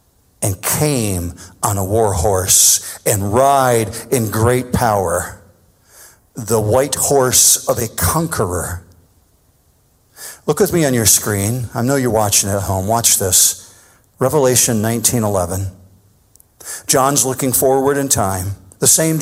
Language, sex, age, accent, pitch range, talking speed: English, male, 50-69, American, 100-150 Hz, 125 wpm